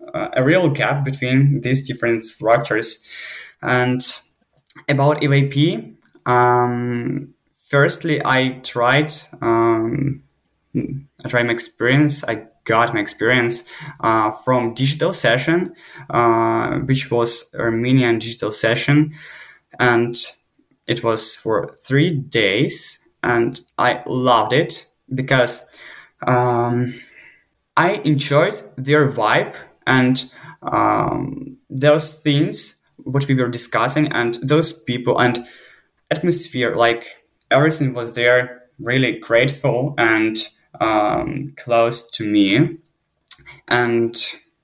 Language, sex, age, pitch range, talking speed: English, male, 20-39, 115-145 Hz, 100 wpm